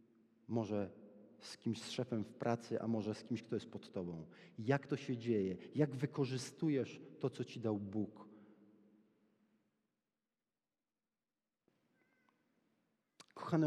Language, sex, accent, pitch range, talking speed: Polish, male, native, 110-140 Hz, 120 wpm